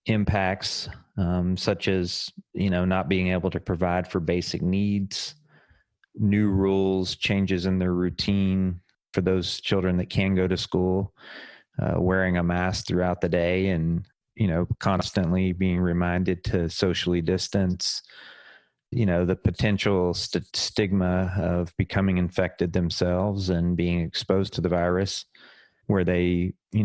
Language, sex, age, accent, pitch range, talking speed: English, male, 30-49, American, 90-100 Hz, 140 wpm